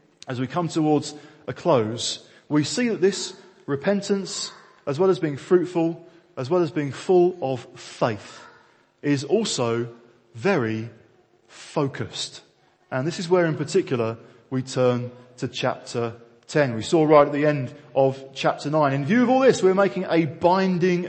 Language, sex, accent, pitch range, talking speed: English, male, British, 140-190 Hz, 160 wpm